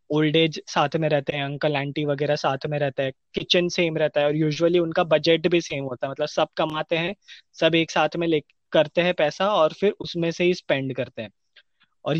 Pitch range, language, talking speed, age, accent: 155-195 Hz, Hindi, 225 wpm, 20-39, native